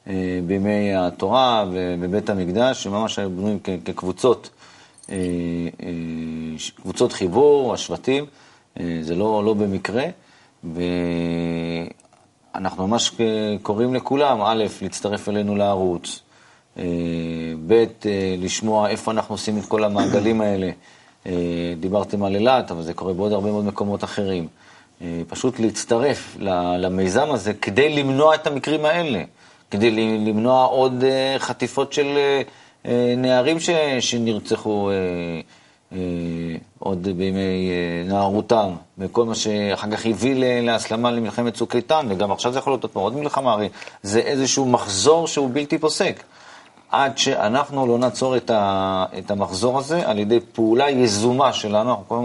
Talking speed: 115 wpm